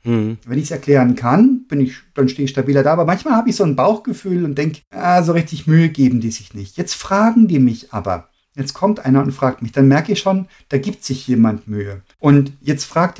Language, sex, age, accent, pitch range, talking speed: German, male, 50-69, German, 125-160 Hz, 235 wpm